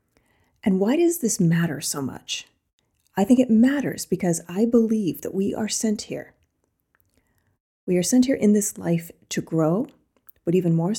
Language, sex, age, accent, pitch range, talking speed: English, female, 30-49, American, 175-245 Hz, 170 wpm